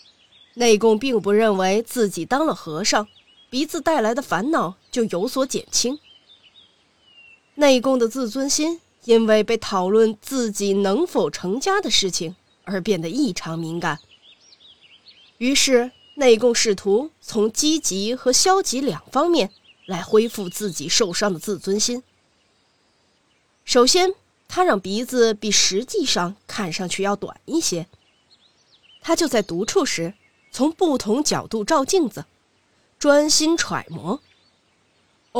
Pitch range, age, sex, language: 200-285 Hz, 20-39, female, Chinese